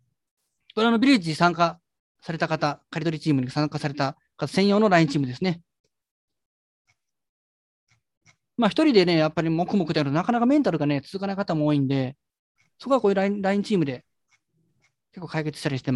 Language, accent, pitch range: Japanese, native, 150-215 Hz